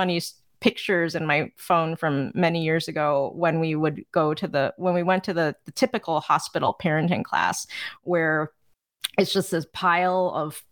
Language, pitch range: English, 150-180 Hz